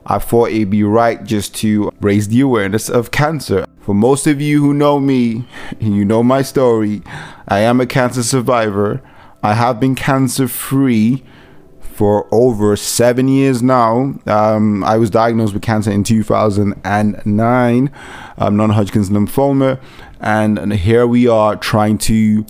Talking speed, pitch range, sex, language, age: 150 wpm, 105-130 Hz, male, English, 30-49